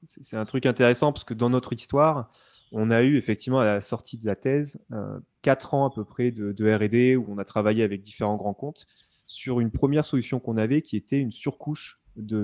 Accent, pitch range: French, 110-135 Hz